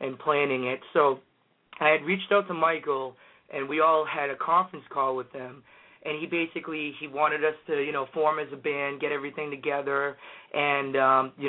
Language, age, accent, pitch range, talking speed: English, 30-49, American, 140-155 Hz, 200 wpm